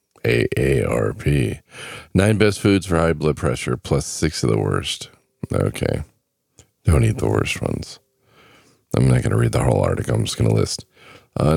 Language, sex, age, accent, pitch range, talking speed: English, male, 40-59, American, 75-100 Hz, 175 wpm